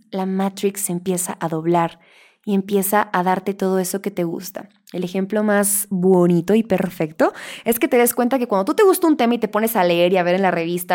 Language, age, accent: Spanish, 20-39, Mexican